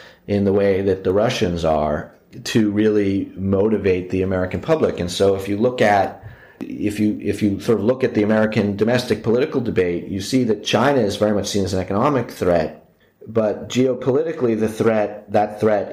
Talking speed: 190 wpm